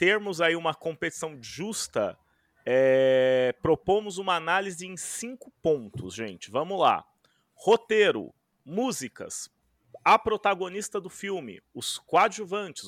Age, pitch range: 30-49, 140-185 Hz